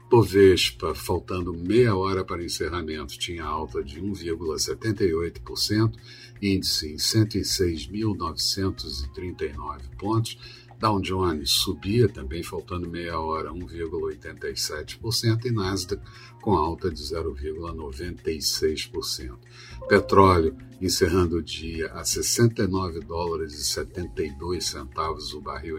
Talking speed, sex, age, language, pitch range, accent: 90 wpm, male, 60-79, Portuguese, 85-115 Hz, Brazilian